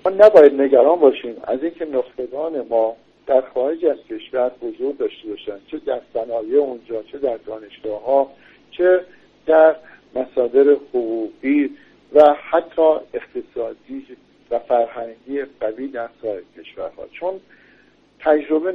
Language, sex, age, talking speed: Persian, male, 50-69, 120 wpm